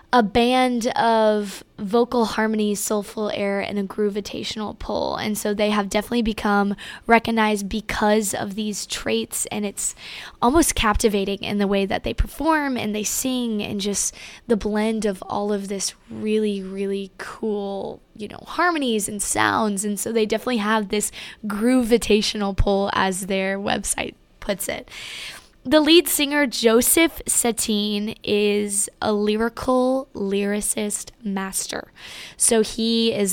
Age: 10-29